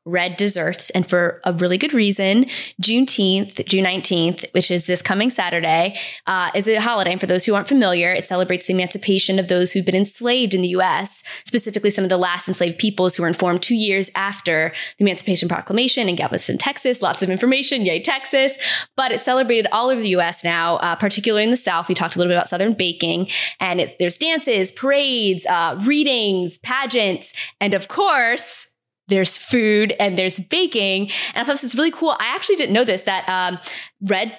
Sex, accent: female, American